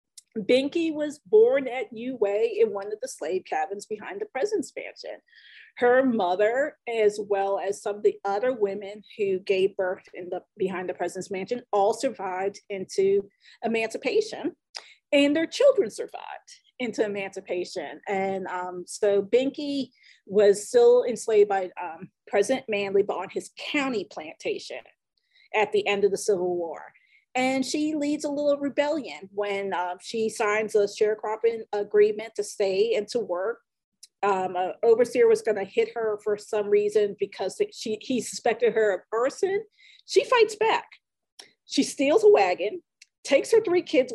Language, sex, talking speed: English, female, 150 wpm